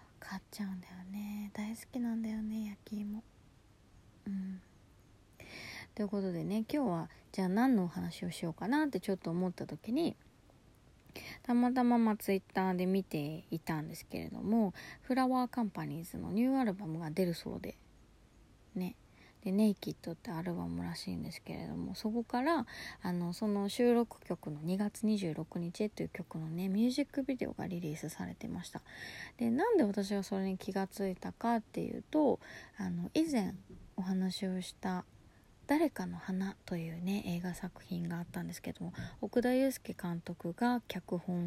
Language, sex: Japanese, female